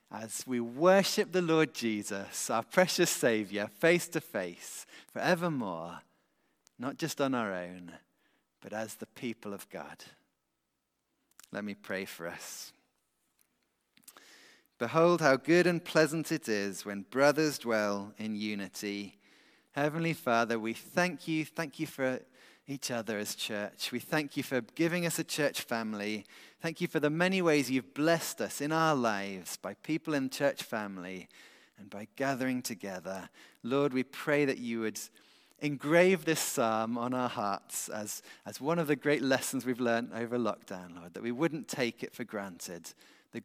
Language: English